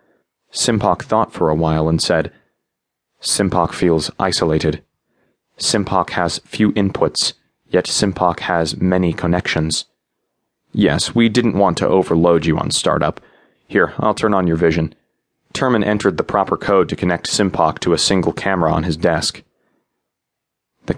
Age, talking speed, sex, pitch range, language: 30-49, 145 wpm, male, 80-105 Hz, English